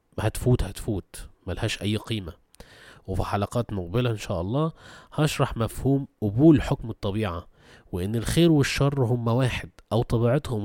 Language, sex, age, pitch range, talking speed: Arabic, male, 20-39, 100-140 Hz, 140 wpm